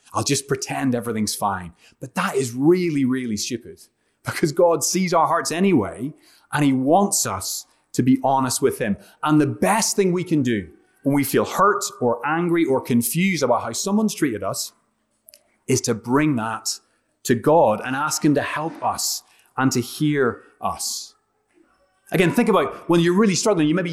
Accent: British